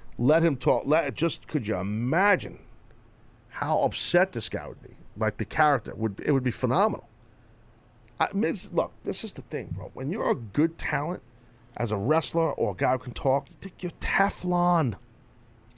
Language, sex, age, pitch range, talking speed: English, male, 40-59, 120-185 Hz, 185 wpm